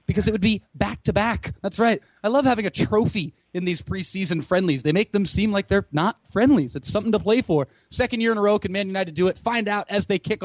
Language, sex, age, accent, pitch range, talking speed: English, male, 30-49, American, 170-215 Hz, 255 wpm